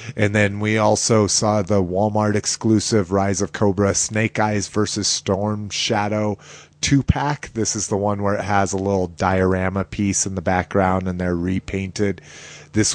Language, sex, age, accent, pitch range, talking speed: English, male, 30-49, American, 95-115 Hz, 165 wpm